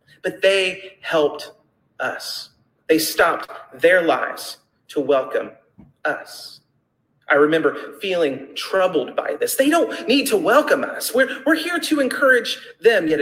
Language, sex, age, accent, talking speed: English, male, 30-49, American, 135 wpm